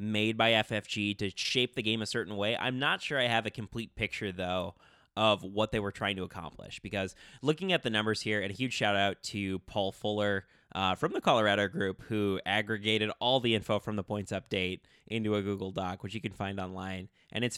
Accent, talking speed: American, 220 wpm